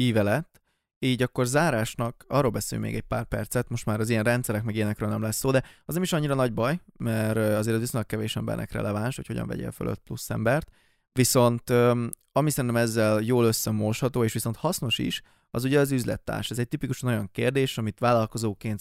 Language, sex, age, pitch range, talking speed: Hungarian, male, 20-39, 110-130 Hz, 195 wpm